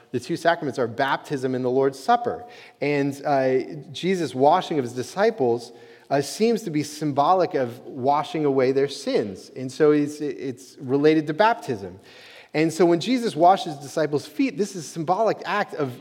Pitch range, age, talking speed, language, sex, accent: 130-185 Hz, 30-49, 175 wpm, English, male, American